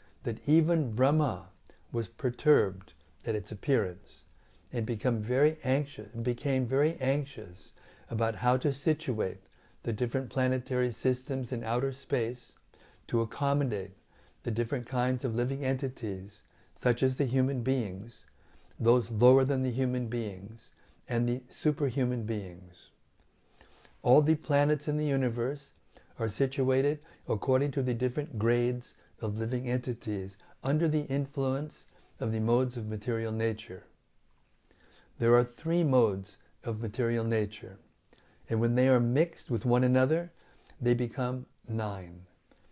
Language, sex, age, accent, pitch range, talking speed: English, male, 60-79, American, 115-135 Hz, 130 wpm